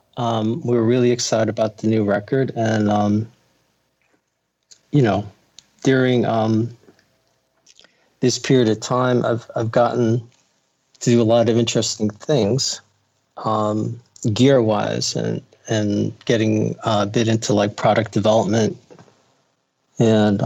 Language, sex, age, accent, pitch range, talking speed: English, male, 40-59, American, 105-125 Hz, 115 wpm